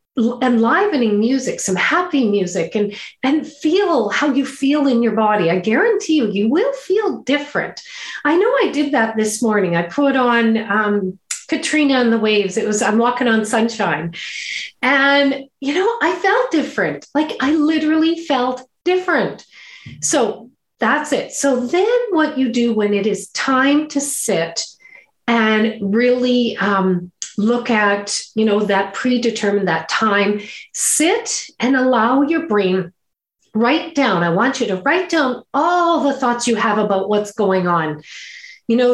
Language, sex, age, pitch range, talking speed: English, female, 40-59, 210-290 Hz, 155 wpm